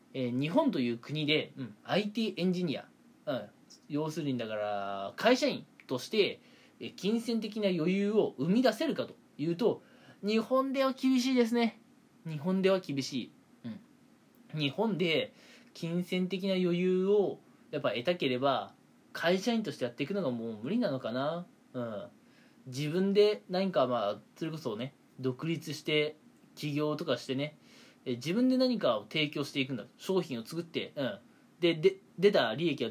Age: 20-39